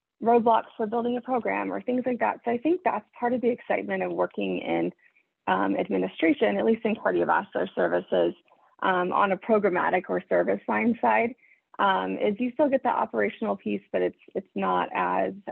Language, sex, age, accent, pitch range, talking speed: English, female, 30-49, American, 185-240 Hz, 180 wpm